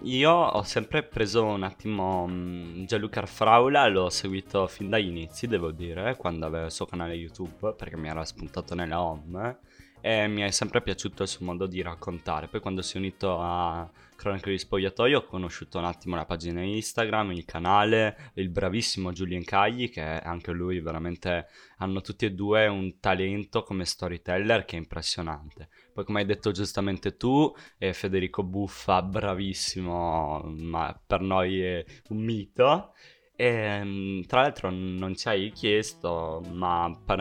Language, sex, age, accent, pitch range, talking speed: Italian, male, 20-39, native, 85-100 Hz, 160 wpm